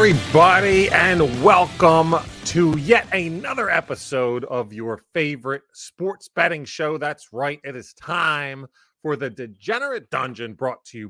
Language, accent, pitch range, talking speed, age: English, American, 115-180 Hz, 135 wpm, 30-49